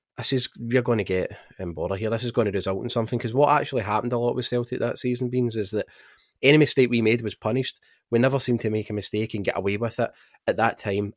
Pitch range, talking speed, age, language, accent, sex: 90-115 Hz, 270 wpm, 20-39, English, British, male